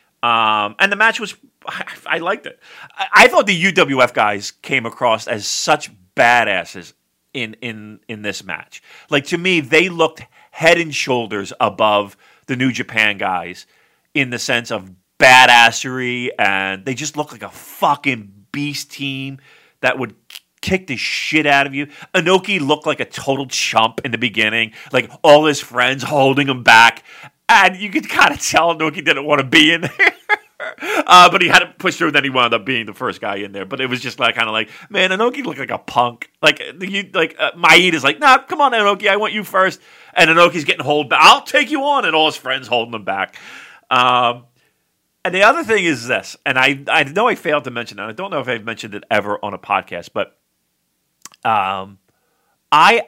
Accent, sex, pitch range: American, male, 115-170 Hz